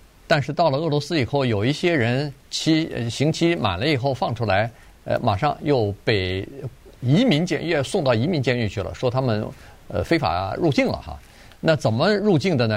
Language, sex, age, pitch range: Chinese, male, 50-69, 105-140 Hz